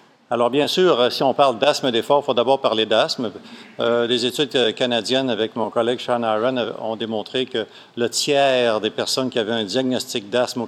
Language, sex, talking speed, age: French, male, 195 wpm, 50-69